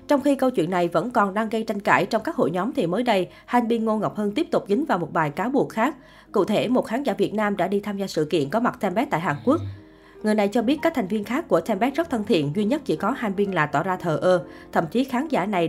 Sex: female